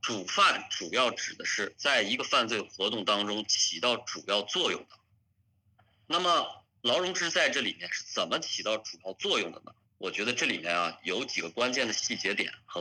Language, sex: Chinese, male